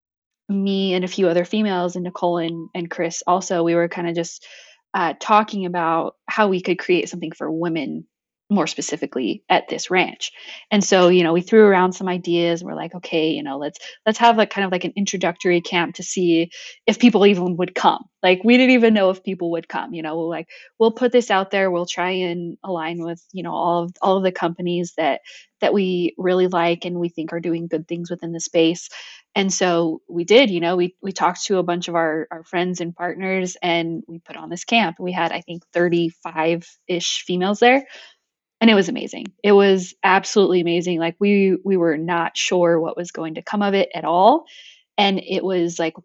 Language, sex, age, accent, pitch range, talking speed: English, female, 20-39, American, 170-200 Hz, 220 wpm